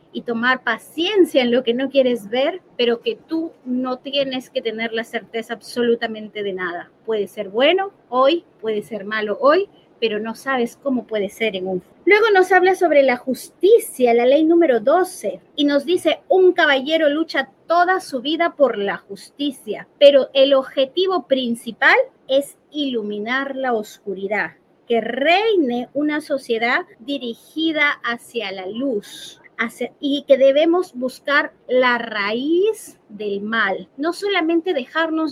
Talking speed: 145 wpm